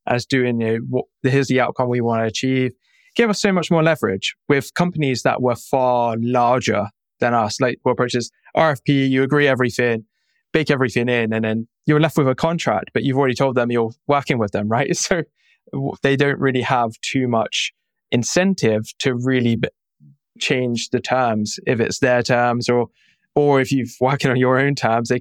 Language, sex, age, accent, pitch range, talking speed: English, male, 20-39, British, 120-140 Hz, 190 wpm